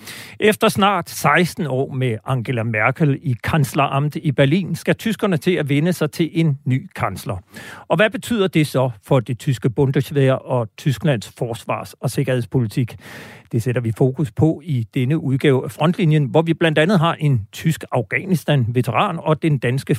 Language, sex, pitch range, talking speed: Danish, male, 120-160 Hz, 170 wpm